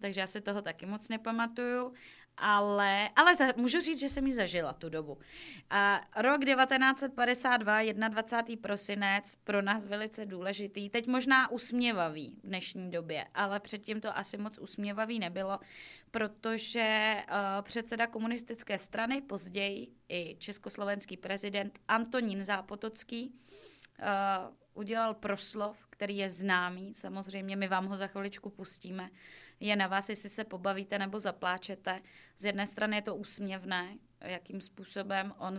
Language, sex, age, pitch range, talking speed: Czech, female, 20-39, 195-225 Hz, 130 wpm